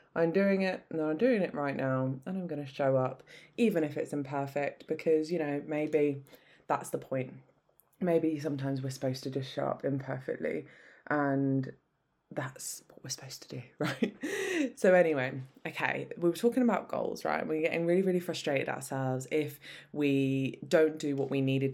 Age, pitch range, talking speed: 20-39, 140-175 Hz, 175 wpm